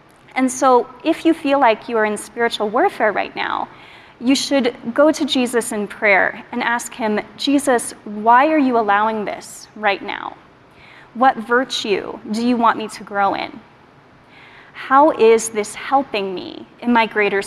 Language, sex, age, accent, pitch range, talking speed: English, female, 30-49, American, 215-280 Hz, 165 wpm